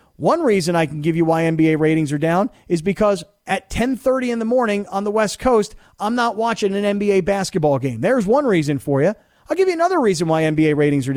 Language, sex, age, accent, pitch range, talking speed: English, male, 40-59, American, 165-240 Hz, 230 wpm